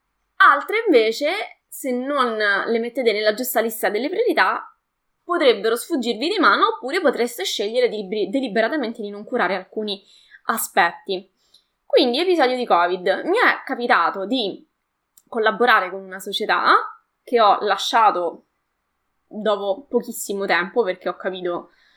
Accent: native